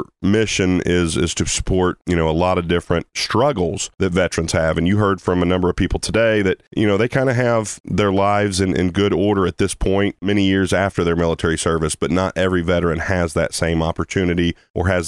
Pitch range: 80-90 Hz